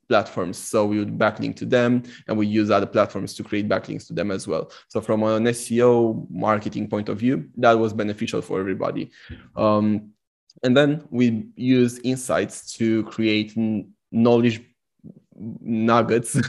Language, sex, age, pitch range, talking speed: English, male, 20-39, 105-120 Hz, 155 wpm